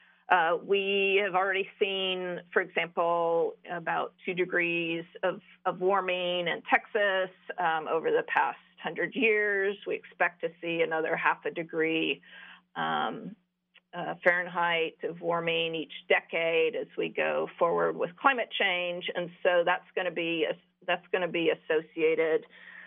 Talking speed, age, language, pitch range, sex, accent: 130 wpm, 40-59, English, 175-215 Hz, female, American